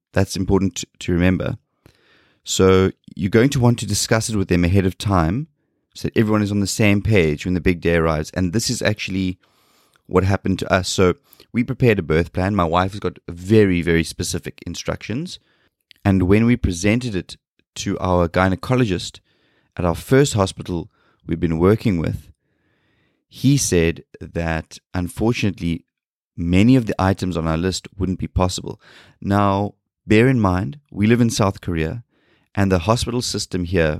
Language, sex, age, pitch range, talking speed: English, male, 30-49, 90-110 Hz, 170 wpm